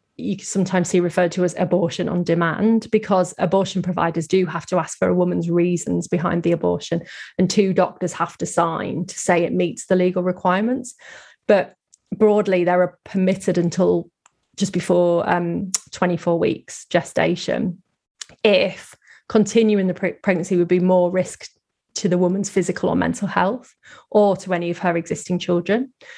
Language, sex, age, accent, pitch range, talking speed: English, female, 20-39, British, 180-200 Hz, 160 wpm